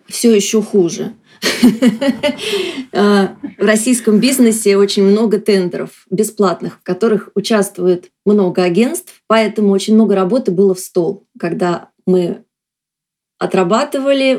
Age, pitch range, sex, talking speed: 20-39, 190-220 Hz, female, 105 wpm